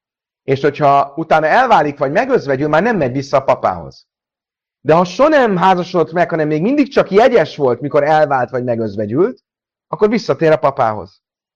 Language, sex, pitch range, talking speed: Hungarian, male, 120-185 Hz, 160 wpm